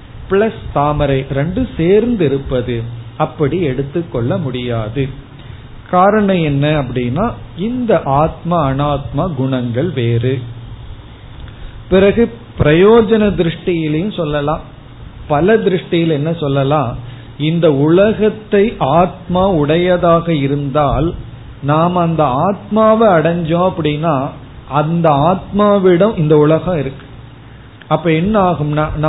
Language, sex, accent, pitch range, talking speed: Tamil, male, native, 135-185 Hz, 85 wpm